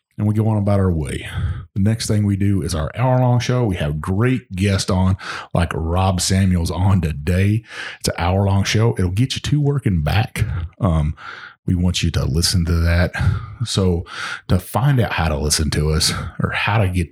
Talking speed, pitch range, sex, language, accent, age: 205 wpm, 80-105 Hz, male, English, American, 40-59